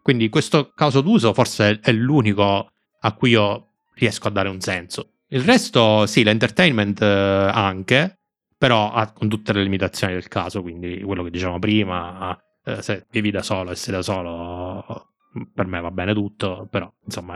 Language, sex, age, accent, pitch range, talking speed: Italian, male, 20-39, native, 95-110 Hz, 160 wpm